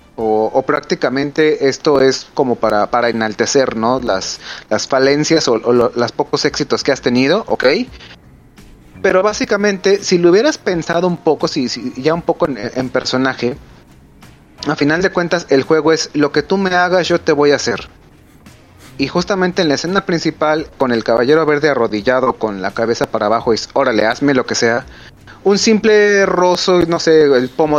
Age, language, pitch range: 30-49, Spanish, 120-165 Hz